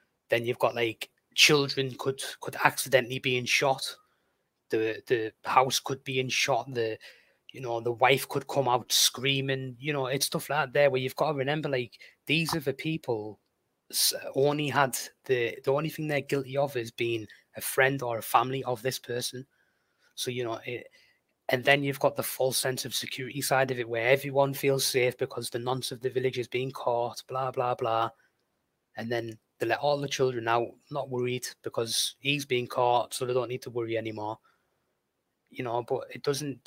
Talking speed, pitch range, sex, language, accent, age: 200 wpm, 120-140 Hz, male, English, British, 20-39